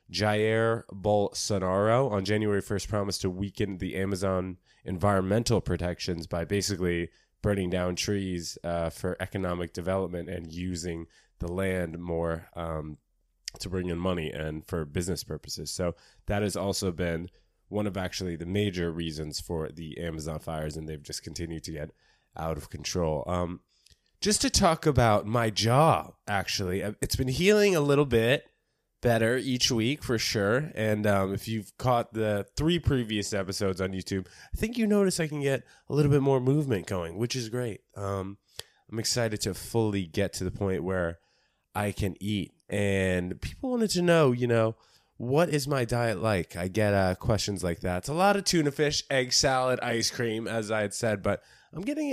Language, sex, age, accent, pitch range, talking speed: English, male, 20-39, American, 90-120 Hz, 175 wpm